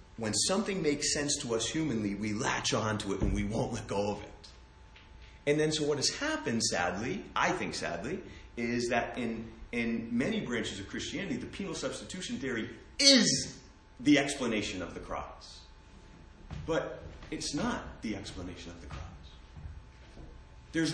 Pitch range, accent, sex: 90-135 Hz, American, male